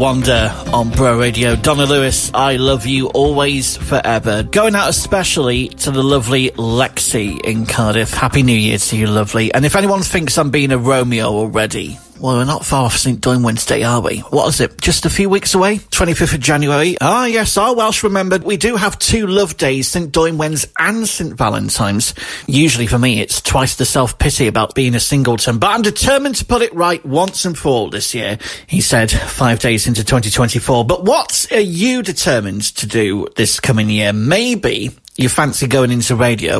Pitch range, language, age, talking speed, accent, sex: 115-150 Hz, English, 30-49, 195 wpm, British, male